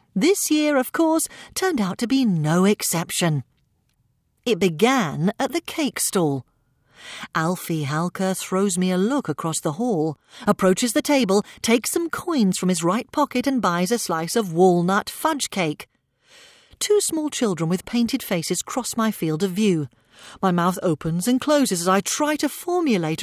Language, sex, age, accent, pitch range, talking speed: English, female, 40-59, British, 190-295 Hz, 165 wpm